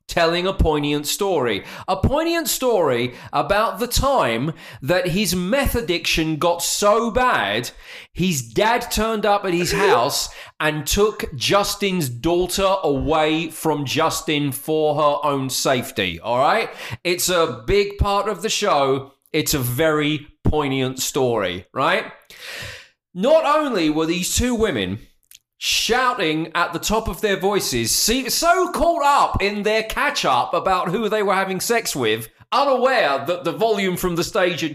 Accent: British